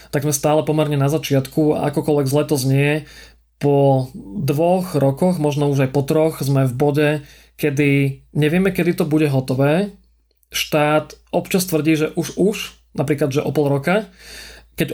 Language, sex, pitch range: Slovak, male, 140-160 Hz